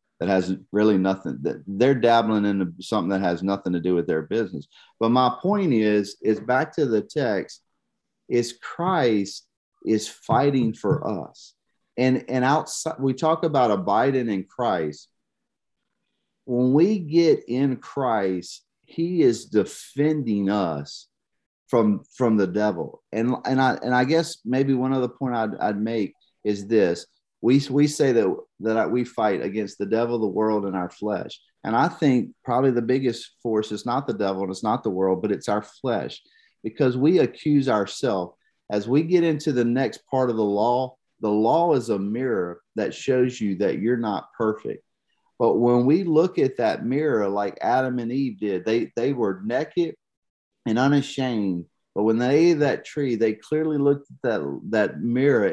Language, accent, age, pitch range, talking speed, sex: English, American, 40-59, 105-135 Hz, 175 wpm, male